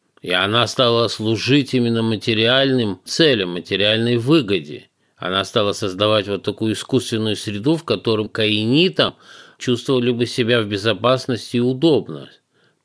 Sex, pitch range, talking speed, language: male, 100-125 Hz, 120 wpm, Russian